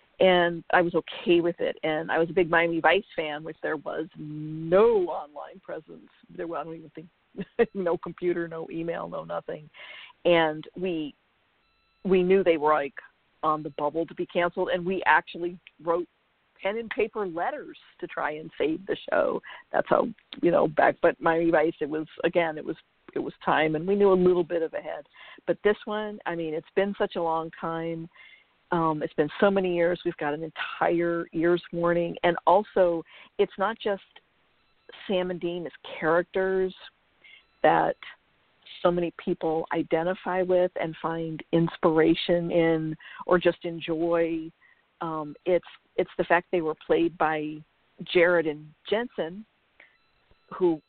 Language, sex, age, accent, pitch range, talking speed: English, female, 50-69, American, 160-185 Hz, 165 wpm